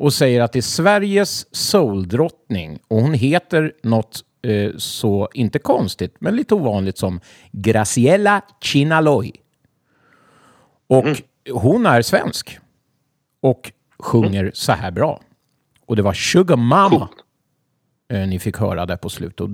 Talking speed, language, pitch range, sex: 130 wpm, Swedish, 100-145 Hz, male